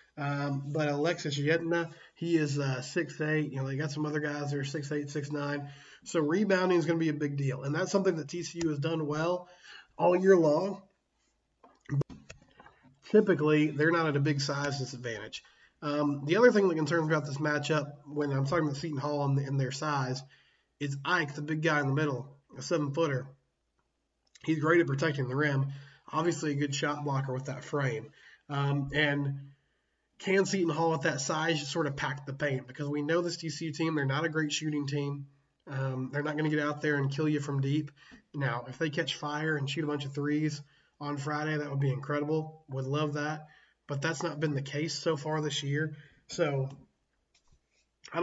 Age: 20-39